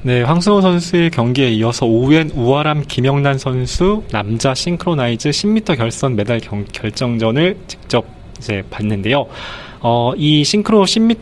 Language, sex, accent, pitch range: Korean, male, native, 115-160 Hz